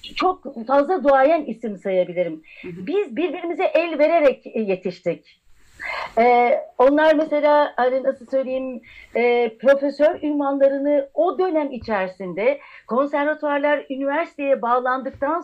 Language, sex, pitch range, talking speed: Turkish, female, 235-305 Hz, 95 wpm